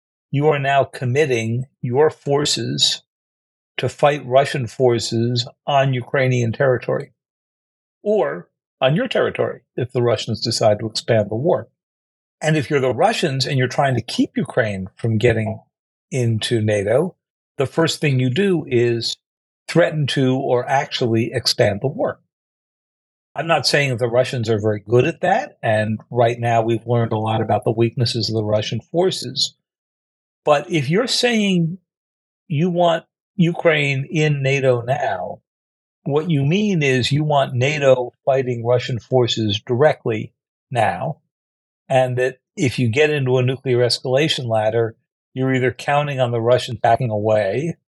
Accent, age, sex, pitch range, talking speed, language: American, 50-69, male, 115-150 Hz, 150 wpm, English